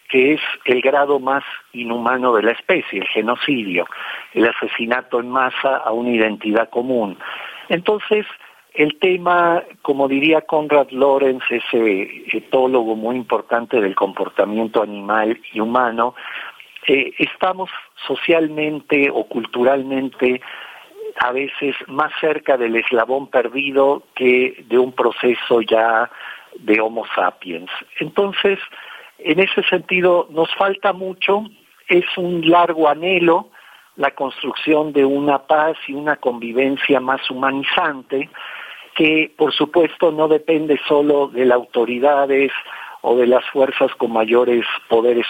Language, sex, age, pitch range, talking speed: Spanish, male, 50-69, 125-155 Hz, 120 wpm